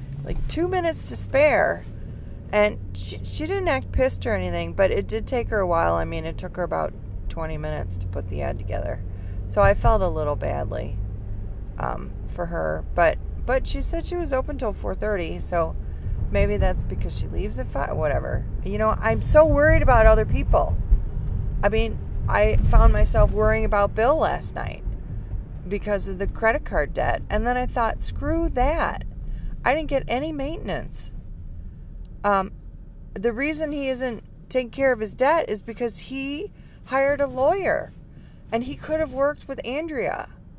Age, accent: 30-49, American